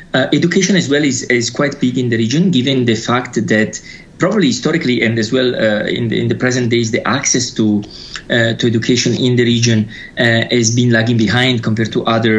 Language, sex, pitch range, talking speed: English, male, 110-125 Hz, 215 wpm